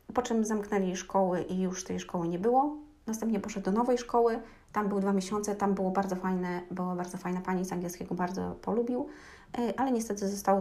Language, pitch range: Polish, 185-215 Hz